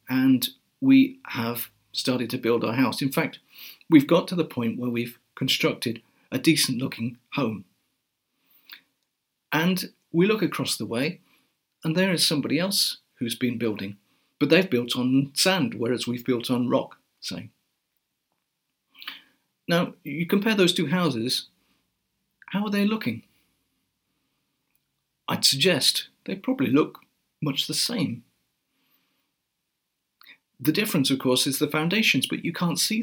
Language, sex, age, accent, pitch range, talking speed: English, male, 50-69, British, 125-170 Hz, 140 wpm